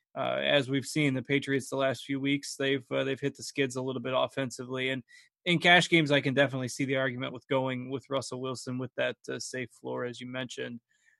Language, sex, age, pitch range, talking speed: English, male, 20-39, 140-170 Hz, 230 wpm